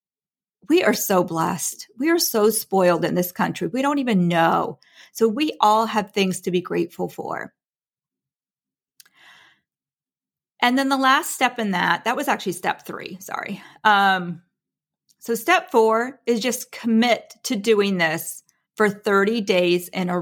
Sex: female